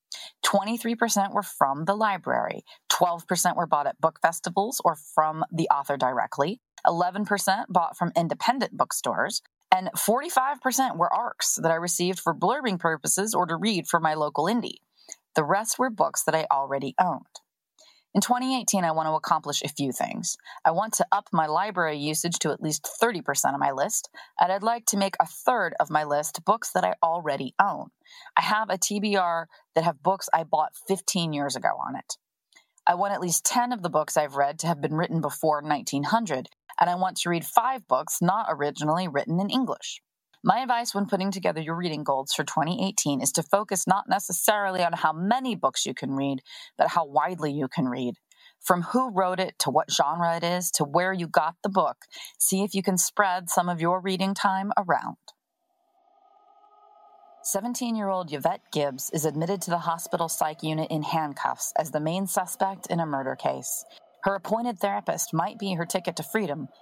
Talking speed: 185 wpm